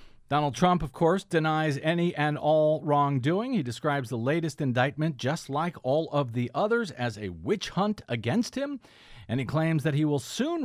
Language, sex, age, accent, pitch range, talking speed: English, male, 50-69, American, 135-190 Hz, 185 wpm